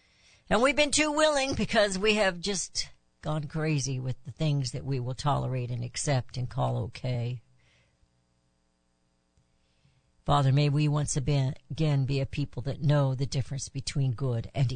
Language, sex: English, female